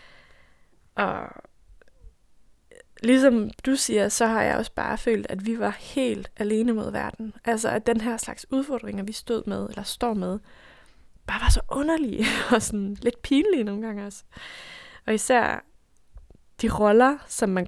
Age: 20-39